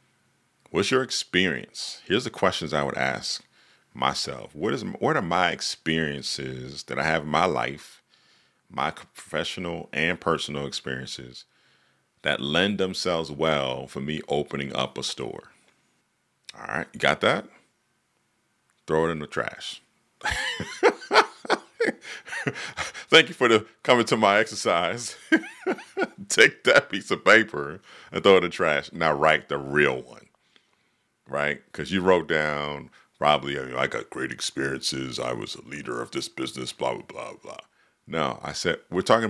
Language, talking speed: English, 150 wpm